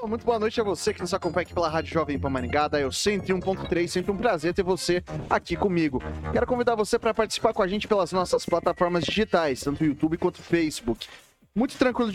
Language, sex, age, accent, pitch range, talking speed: Portuguese, male, 20-39, Brazilian, 145-190 Hz, 215 wpm